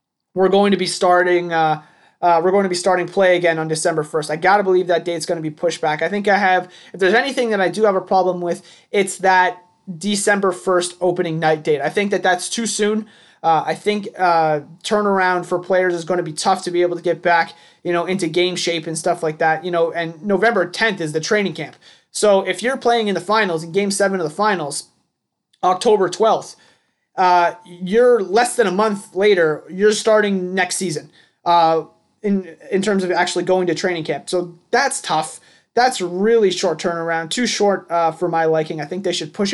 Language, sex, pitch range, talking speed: English, male, 170-200 Hz, 220 wpm